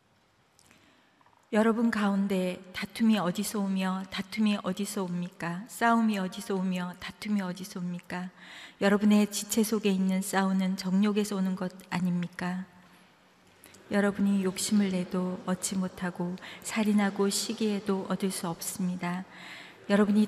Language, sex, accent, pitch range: Korean, female, native, 185-205 Hz